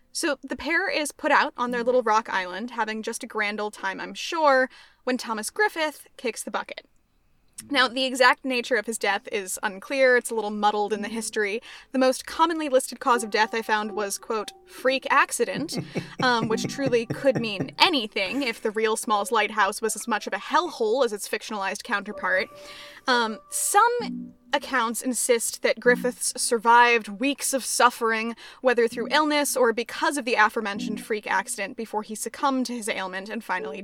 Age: 10-29